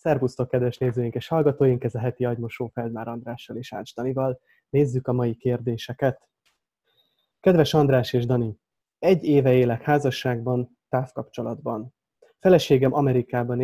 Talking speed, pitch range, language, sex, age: 130 wpm, 120-145 Hz, Hungarian, male, 30-49